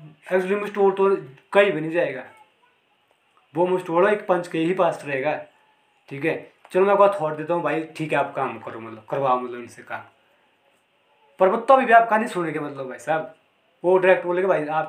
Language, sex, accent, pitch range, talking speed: Hindi, male, native, 145-195 Hz, 205 wpm